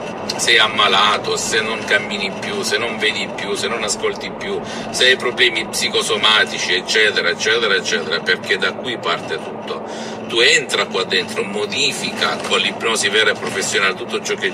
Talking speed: 160 wpm